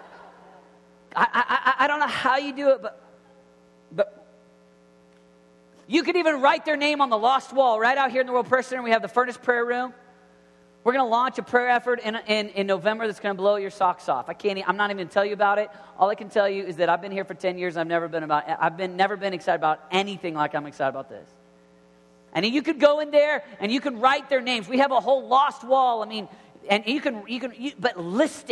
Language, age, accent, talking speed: English, 40-59, American, 255 wpm